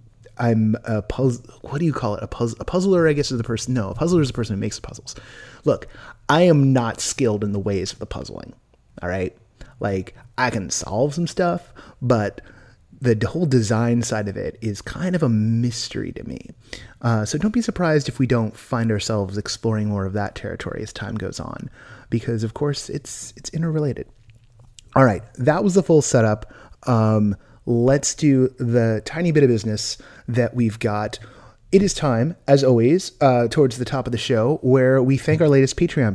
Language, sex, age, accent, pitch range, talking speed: English, male, 30-49, American, 110-155 Hz, 195 wpm